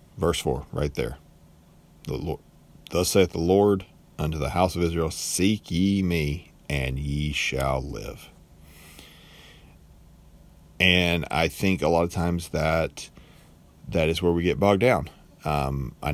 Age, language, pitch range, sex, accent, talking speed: 40-59, English, 75-90 Hz, male, American, 145 wpm